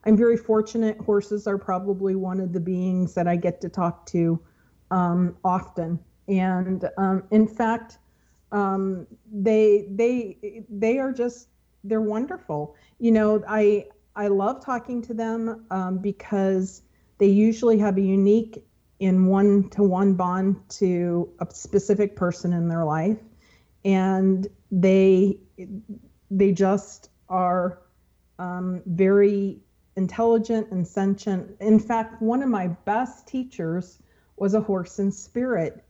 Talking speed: 130 wpm